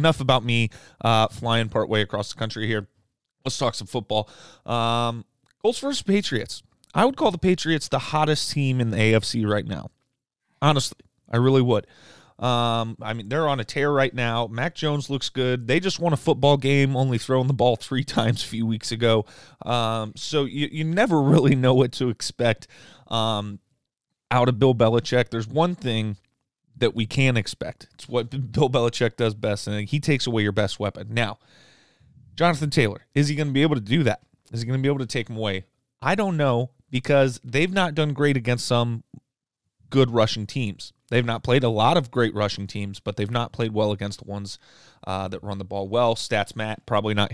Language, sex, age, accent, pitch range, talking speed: English, male, 30-49, American, 110-140 Hz, 205 wpm